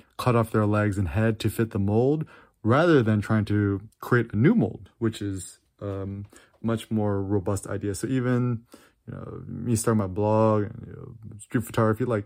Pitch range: 105-125 Hz